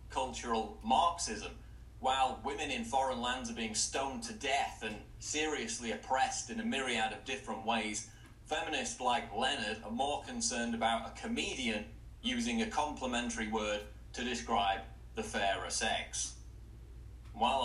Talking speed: 135 wpm